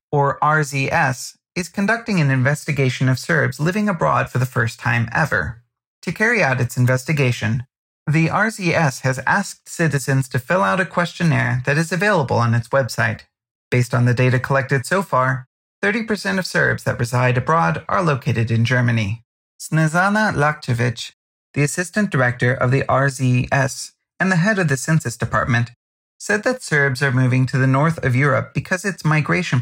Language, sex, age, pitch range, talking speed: English, male, 30-49, 125-170 Hz, 165 wpm